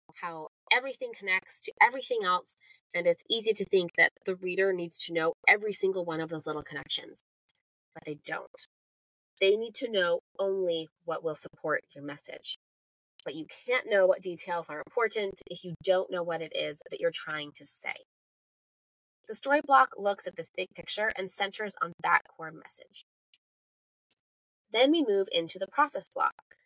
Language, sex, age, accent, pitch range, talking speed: English, female, 20-39, American, 165-255 Hz, 175 wpm